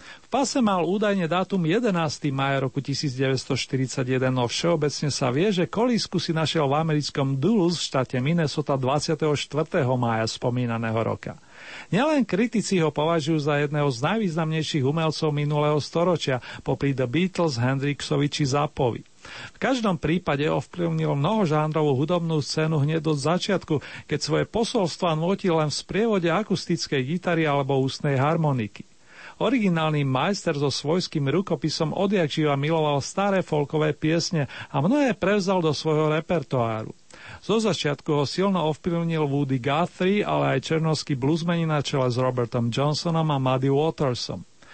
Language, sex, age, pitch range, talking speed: Slovak, male, 40-59, 140-175 Hz, 135 wpm